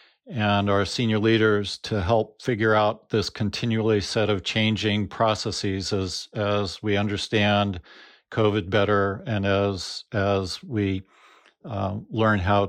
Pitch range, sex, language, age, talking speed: 100-110 Hz, male, English, 40-59, 130 wpm